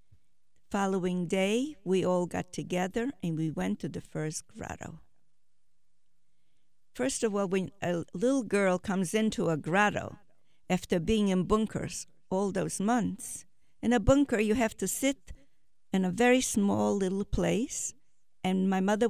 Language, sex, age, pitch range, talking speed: English, female, 50-69, 180-235 Hz, 150 wpm